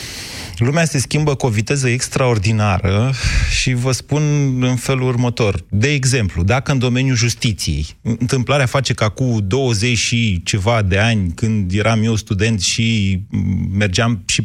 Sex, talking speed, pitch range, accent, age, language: male, 145 wpm, 105-135 Hz, native, 30-49, Romanian